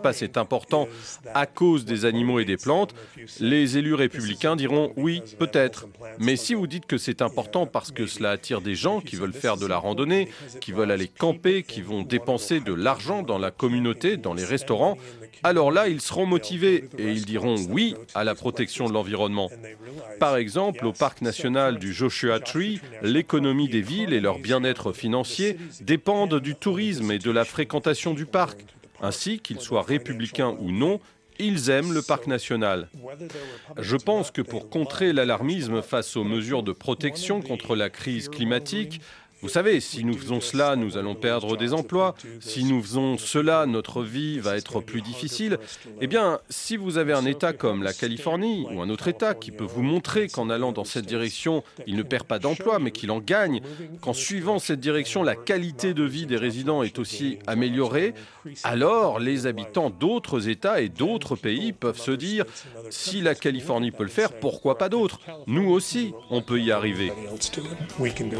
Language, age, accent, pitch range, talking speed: French, 40-59, French, 115-165 Hz, 180 wpm